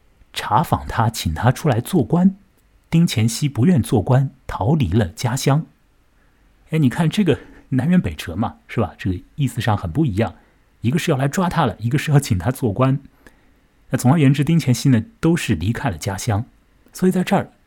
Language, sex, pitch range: Chinese, male, 95-140 Hz